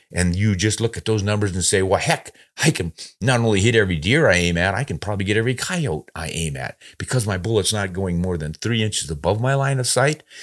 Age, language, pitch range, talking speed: 50-69, English, 90-130 Hz, 255 wpm